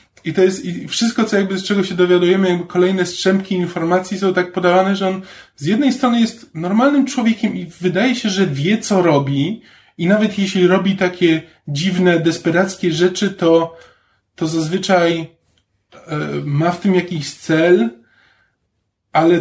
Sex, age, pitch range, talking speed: male, 20-39, 165-190 Hz, 160 wpm